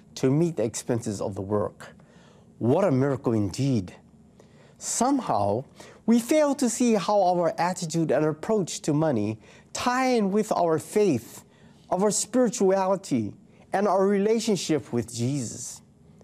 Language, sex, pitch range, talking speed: English, male, 125-200 Hz, 130 wpm